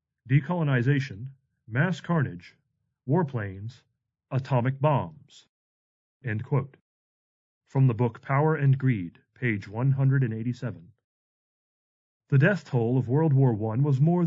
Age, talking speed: 40-59, 105 wpm